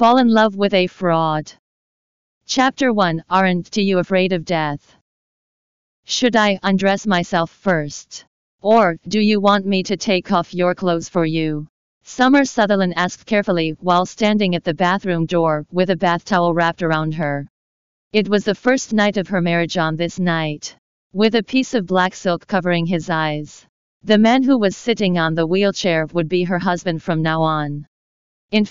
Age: 40-59